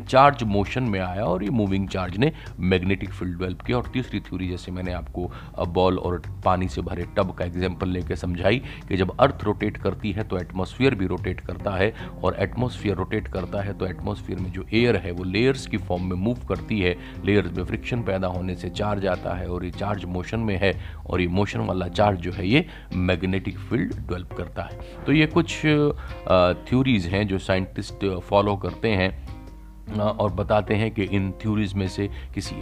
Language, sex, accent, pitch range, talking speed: Hindi, male, native, 90-105 Hz, 195 wpm